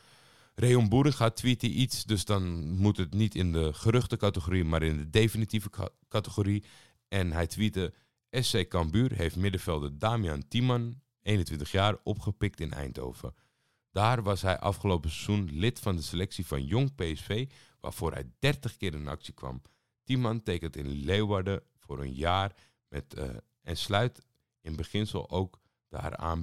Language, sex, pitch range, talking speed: Dutch, male, 80-110 Hz, 150 wpm